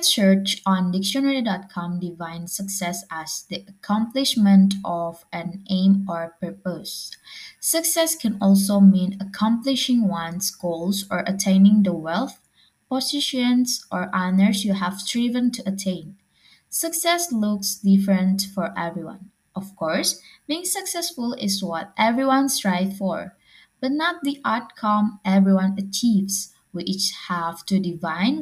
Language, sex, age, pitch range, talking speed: English, female, 20-39, 185-245 Hz, 120 wpm